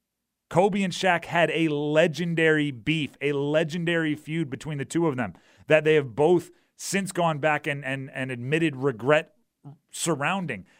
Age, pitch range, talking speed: 30-49, 140-165 Hz, 155 wpm